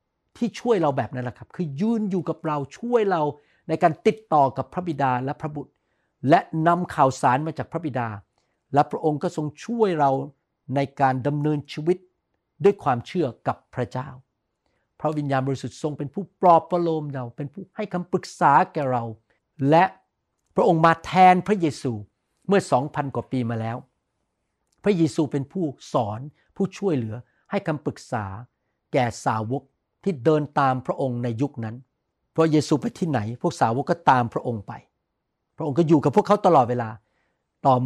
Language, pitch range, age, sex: Thai, 125-170 Hz, 60-79, male